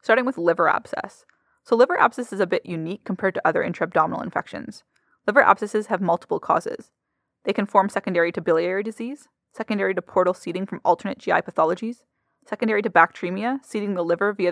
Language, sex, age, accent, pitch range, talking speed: English, female, 20-39, American, 180-225 Hz, 180 wpm